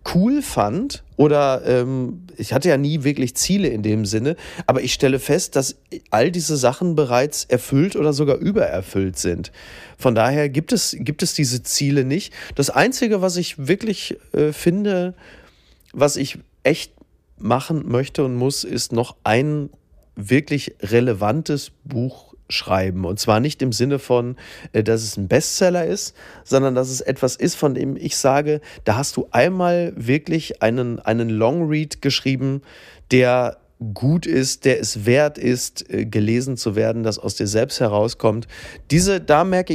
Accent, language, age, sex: German, German, 30-49, male